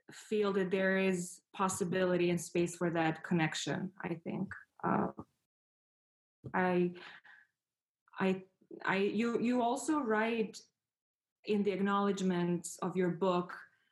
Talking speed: 110 wpm